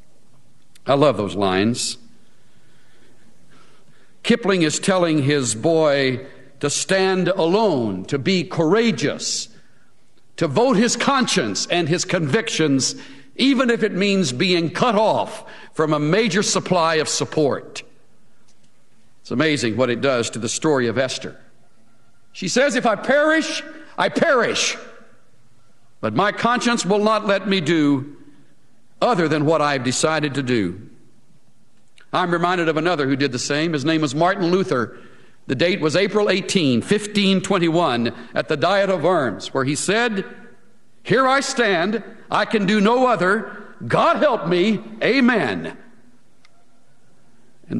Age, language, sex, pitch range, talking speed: 60-79, English, male, 145-210 Hz, 135 wpm